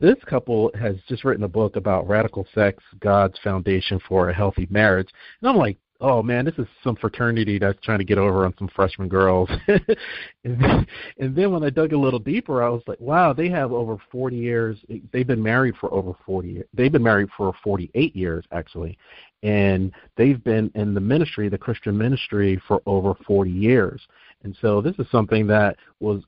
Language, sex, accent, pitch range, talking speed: English, male, American, 100-125 Hz, 195 wpm